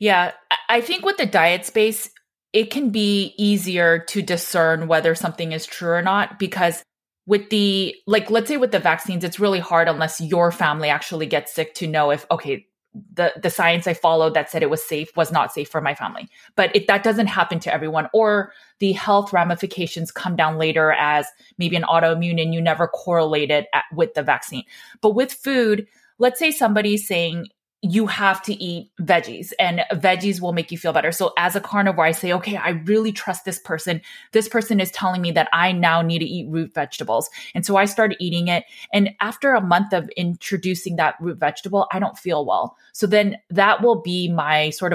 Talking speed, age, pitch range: 205 wpm, 20-39, 165-205 Hz